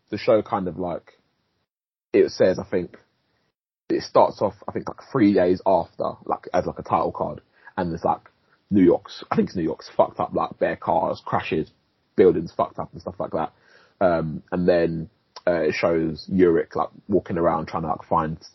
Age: 20-39